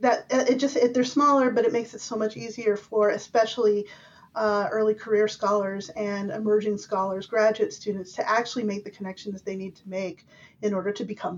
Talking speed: 195 wpm